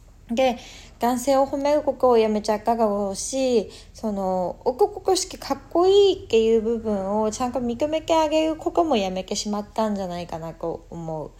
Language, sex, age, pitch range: Japanese, female, 20-39, 185-260 Hz